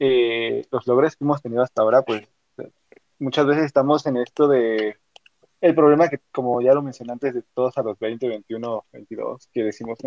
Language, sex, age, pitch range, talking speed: Spanish, male, 20-39, 115-140 Hz, 195 wpm